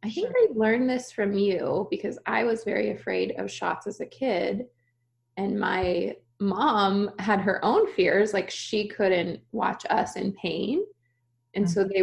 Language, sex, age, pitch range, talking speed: English, female, 20-39, 185-230 Hz, 170 wpm